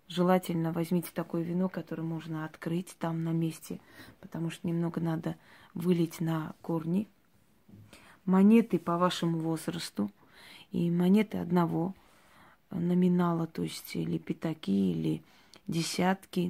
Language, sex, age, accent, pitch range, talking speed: Russian, female, 20-39, native, 165-185 Hz, 115 wpm